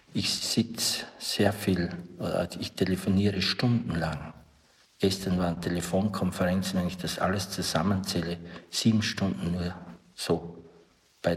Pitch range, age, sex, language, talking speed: 90-105 Hz, 60-79, male, German, 105 wpm